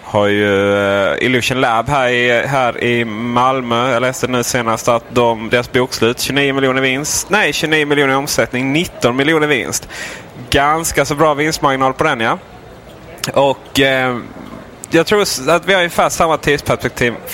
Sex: male